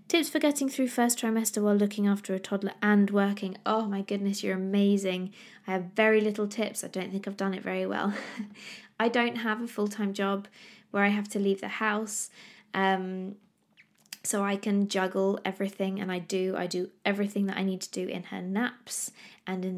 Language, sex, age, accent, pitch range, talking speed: English, female, 20-39, British, 190-220 Hz, 200 wpm